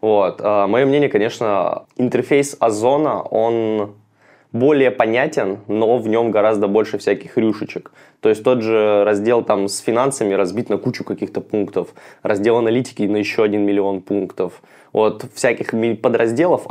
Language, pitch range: Russian, 100-115 Hz